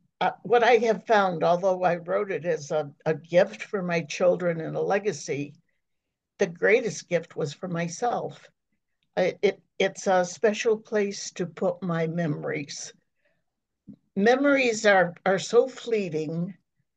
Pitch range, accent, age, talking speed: 170-215 Hz, American, 60-79, 135 wpm